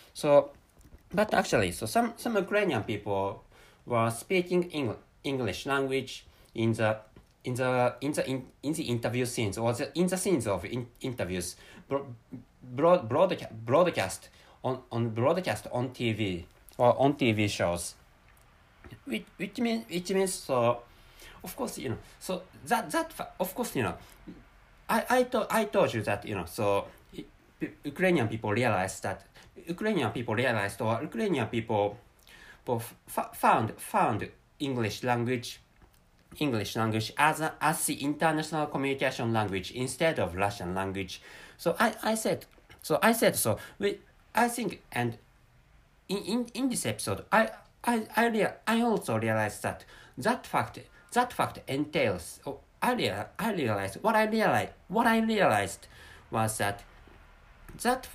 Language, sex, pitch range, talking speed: English, male, 110-180 Hz, 155 wpm